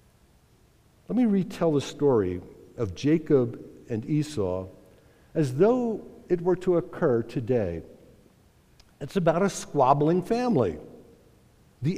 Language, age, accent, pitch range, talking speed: English, 60-79, American, 120-180 Hz, 110 wpm